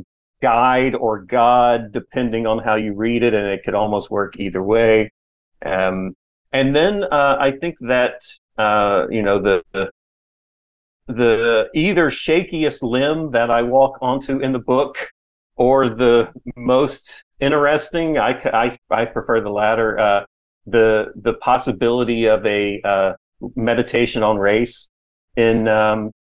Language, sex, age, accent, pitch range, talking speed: English, male, 40-59, American, 105-125 Hz, 135 wpm